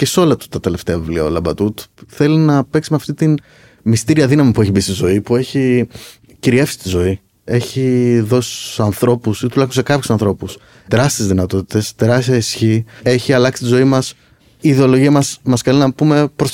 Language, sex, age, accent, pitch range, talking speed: Greek, male, 30-49, native, 105-135 Hz, 190 wpm